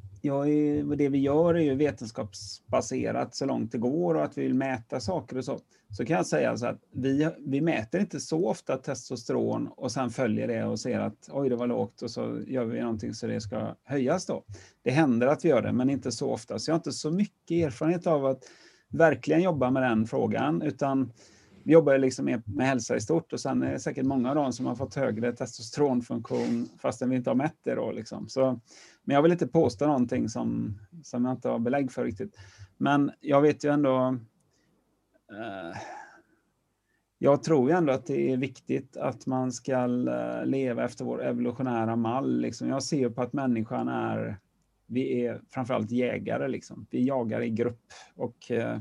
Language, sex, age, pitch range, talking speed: Swedish, male, 30-49, 120-145 Hz, 200 wpm